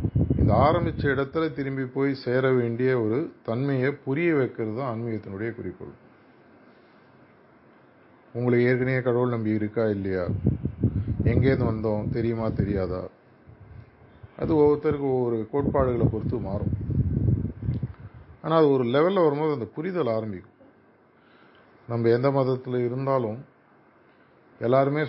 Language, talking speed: Tamil, 95 wpm